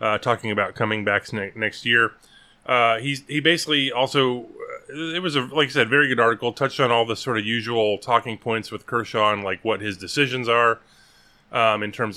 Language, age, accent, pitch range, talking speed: English, 30-49, American, 105-130 Hz, 205 wpm